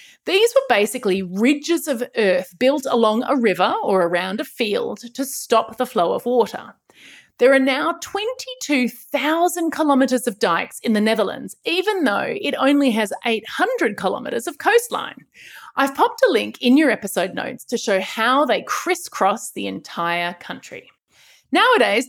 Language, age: English, 30-49